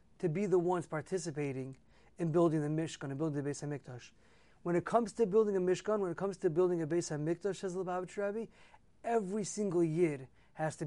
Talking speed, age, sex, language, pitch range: 210 wpm, 30-49, male, English, 155-195 Hz